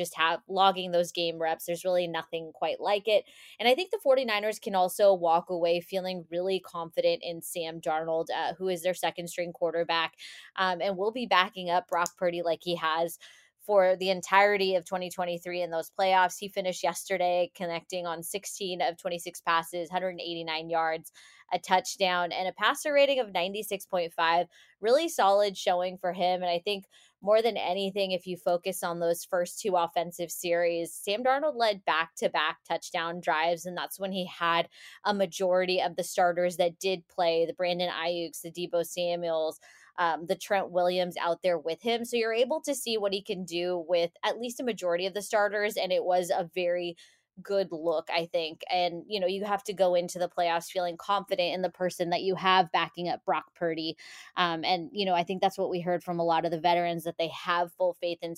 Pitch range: 170-190 Hz